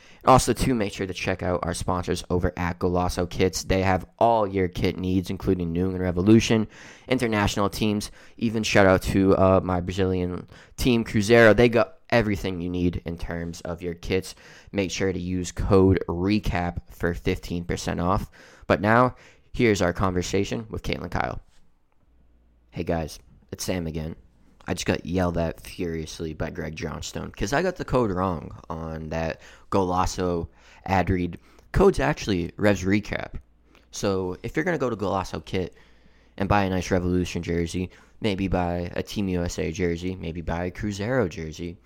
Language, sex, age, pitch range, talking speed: English, male, 20-39, 85-100 Hz, 170 wpm